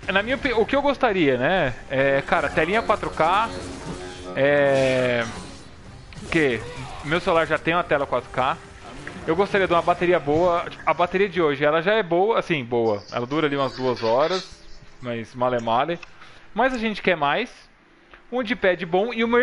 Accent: Brazilian